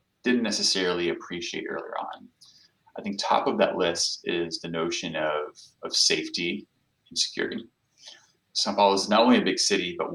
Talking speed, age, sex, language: 165 wpm, 20-39, male, English